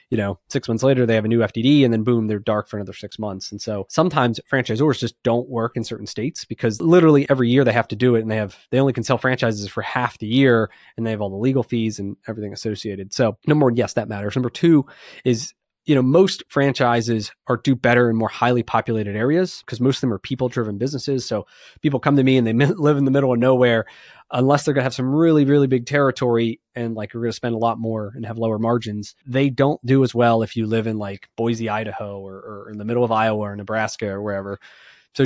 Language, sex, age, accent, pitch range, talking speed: English, male, 20-39, American, 110-135 Hz, 250 wpm